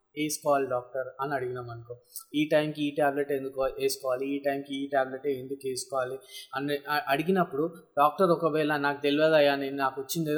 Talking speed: 105 wpm